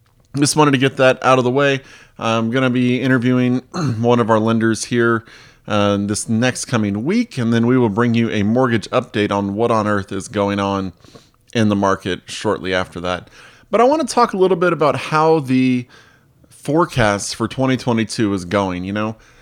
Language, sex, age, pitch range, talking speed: English, male, 30-49, 105-135 Hz, 200 wpm